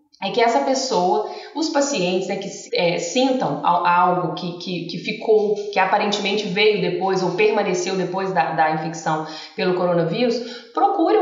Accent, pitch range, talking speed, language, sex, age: Brazilian, 180-245 Hz, 150 wpm, Portuguese, female, 20-39